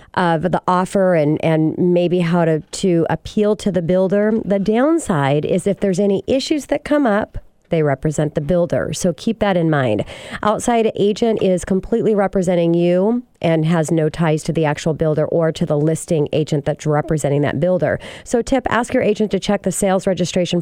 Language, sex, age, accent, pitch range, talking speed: English, female, 40-59, American, 165-195 Hz, 190 wpm